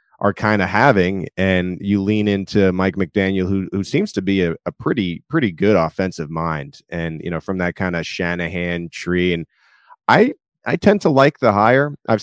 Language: English